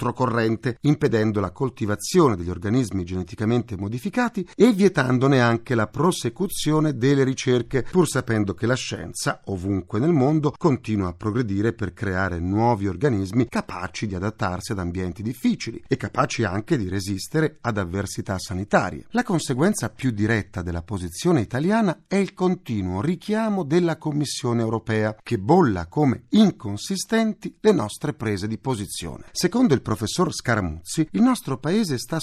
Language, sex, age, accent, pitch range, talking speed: Italian, male, 40-59, native, 105-155 Hz, 140 wpm